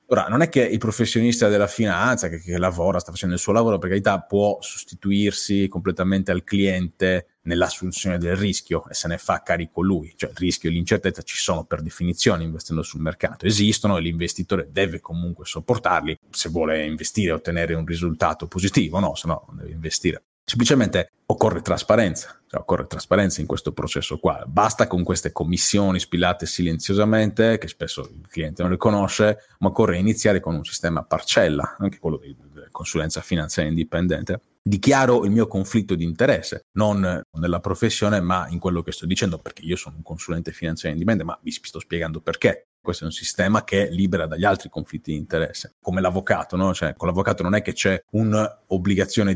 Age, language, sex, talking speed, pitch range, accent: 30-49, Italian, male, 180 wpm, 85-100 Hz, native